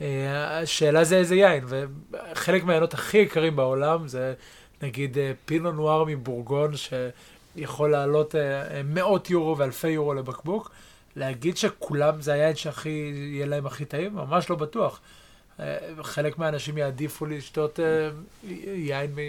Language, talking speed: Hebrew, 110 wpm